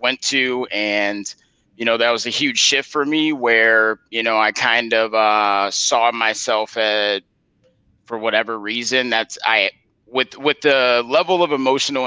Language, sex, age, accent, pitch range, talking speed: English, male, 30-49, American, 105-115 Hz, 165 wpm